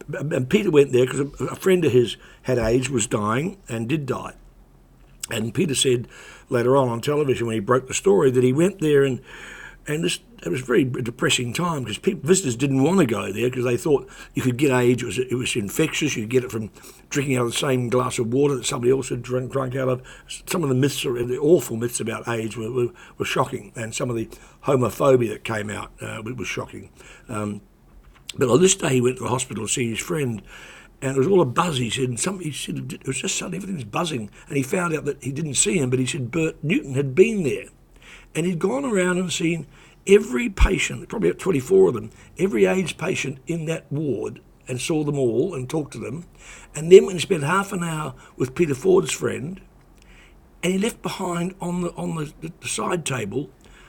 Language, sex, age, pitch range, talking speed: English, male, 60-79, 125-175 Hz, 225 wpm